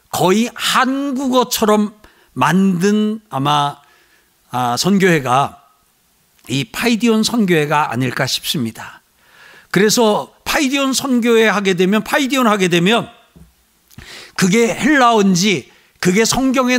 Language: Korean